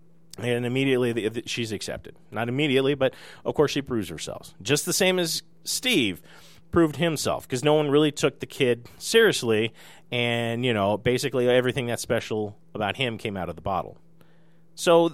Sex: male